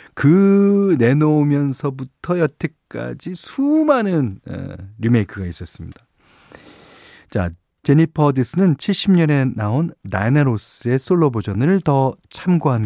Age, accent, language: 40-59, native, Korean